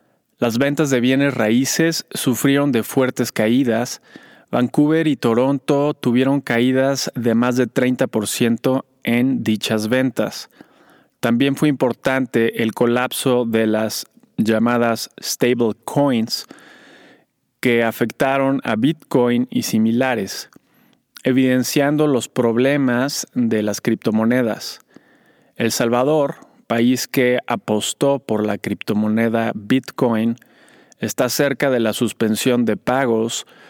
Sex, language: male, Spanish